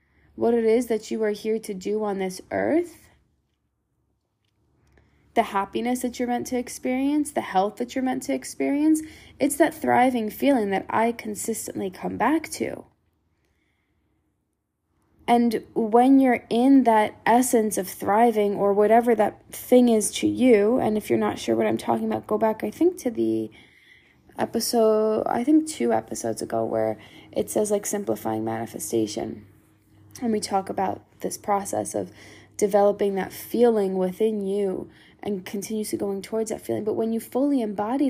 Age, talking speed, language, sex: 10-29, 160 wpm, English, female